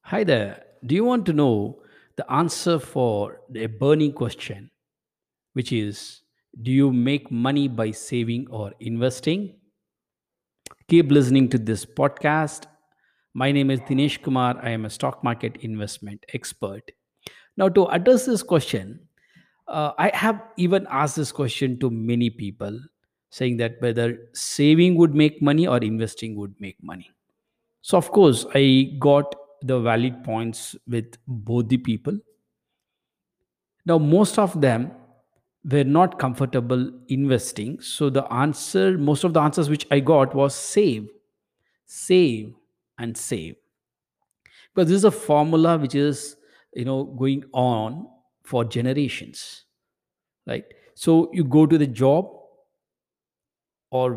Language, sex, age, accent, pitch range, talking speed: English, male, 50-69, Indian, 120-150 Hz, 135 wpm